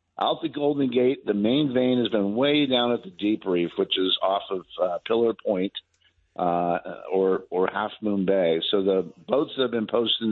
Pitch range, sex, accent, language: 100-125 Hz, male, American, English